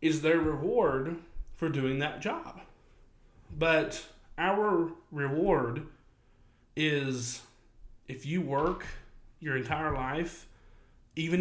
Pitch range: 130-160 Hz